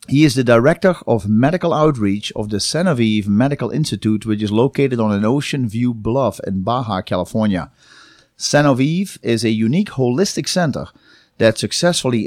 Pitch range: 110-165 Hz